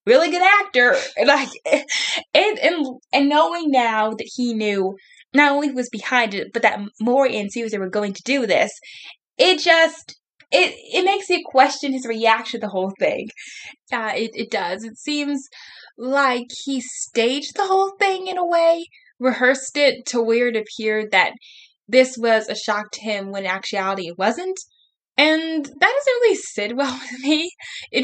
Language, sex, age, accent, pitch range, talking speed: English, female, 10-29, American, 210-295 Hz, 175 wpm